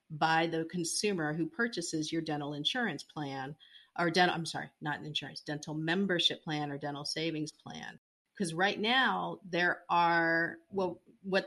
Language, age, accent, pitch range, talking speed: English, 40-59, American, 155-190 Hz, 150 wpm